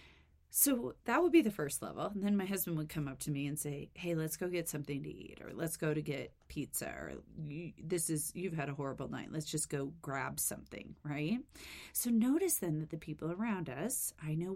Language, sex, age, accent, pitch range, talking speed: English, female, 30-49, American, 150-200 Hz, 225 wpm